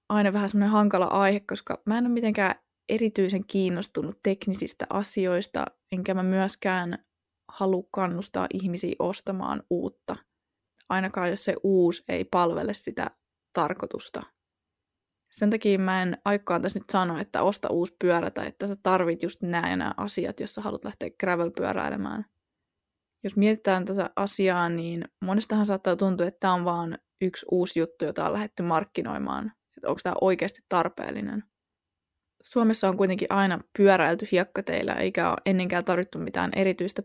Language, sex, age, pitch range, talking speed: Finnish, female, 20-39, 180-205 Hz, 150 wpm